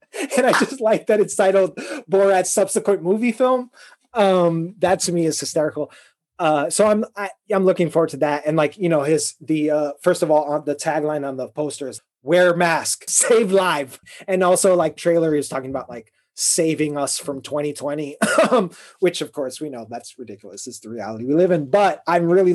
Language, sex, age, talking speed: English, male, 30-49, 195 wpm